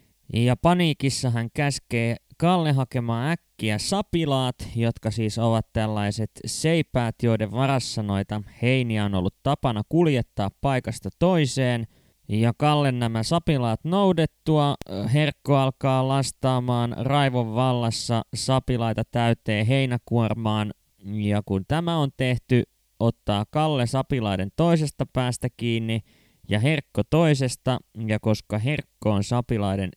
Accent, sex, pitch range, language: native, male, 110-135 Hz, Finnish